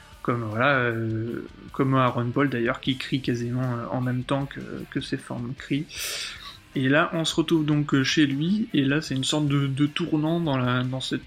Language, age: French, 20-39